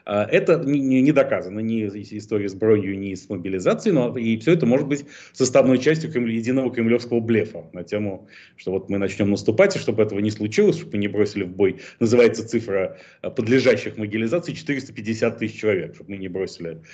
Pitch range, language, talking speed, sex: 105-125 Hz, Russian, 175 wpm, male